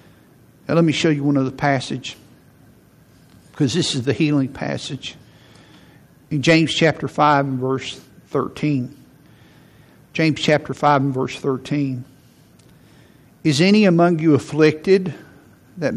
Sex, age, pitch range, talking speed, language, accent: male, 50-69, 140-165 Hz, 120 wpm, English, American